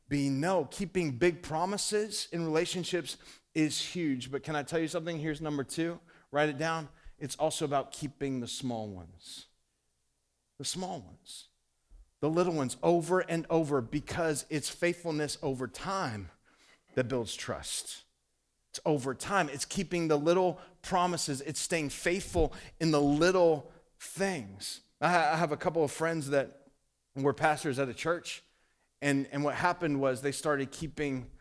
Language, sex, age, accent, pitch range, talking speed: English, male, 30-49, American, 130-170 Hz, 155 wpm